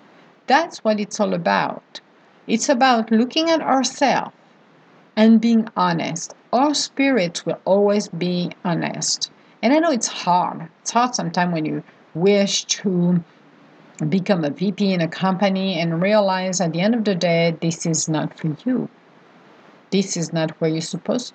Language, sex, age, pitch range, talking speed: English, female, 50-69, 170-225 Hz, 155 wpm